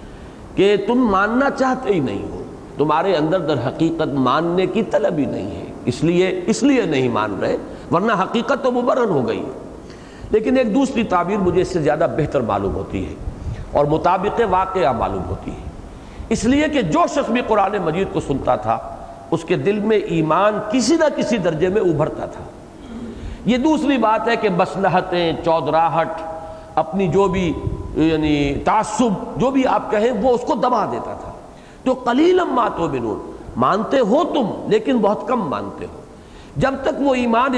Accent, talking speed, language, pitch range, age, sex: Indian, 160 wpm, English, 145-225 Hz, 50-69, male